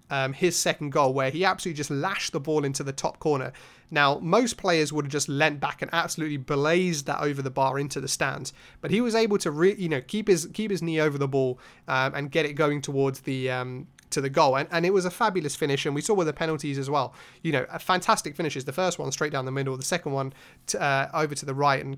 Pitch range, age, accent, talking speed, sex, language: 135-170 Hz, 30-49, British, 265 wpm, male, English